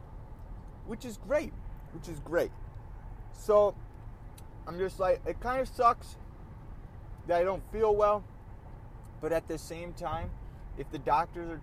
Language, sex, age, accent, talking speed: English, male, 20-39, American, 145 wpm